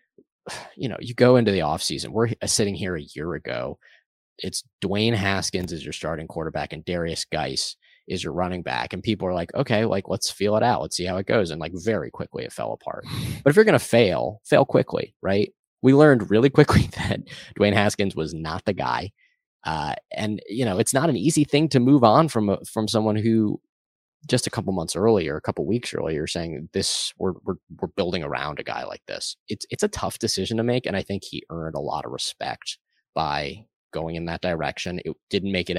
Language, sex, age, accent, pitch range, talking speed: English, male, 20-39, American, 85-115 Hz, 220 wpm